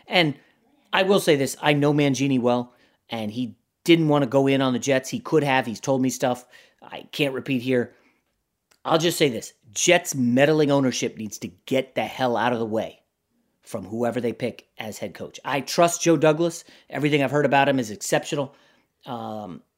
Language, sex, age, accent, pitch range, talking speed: English, male, 30-49, American, 135-195 Hz, 195 wpm